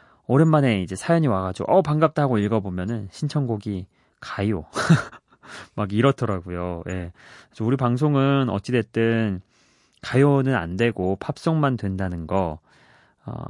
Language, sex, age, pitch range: Korean, male, 30-49, 100-140 Hz